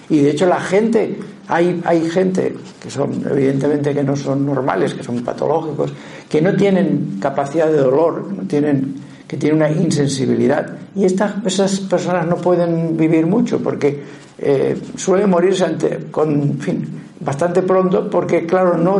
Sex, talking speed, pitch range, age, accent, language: male, 160 wpm, 145-190 Hz, 60-79, Spanish, Spanish